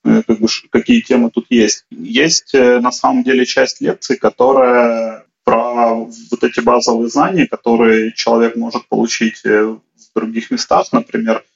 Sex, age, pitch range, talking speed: male, 30-49, 115-160 Hz, 135 wpm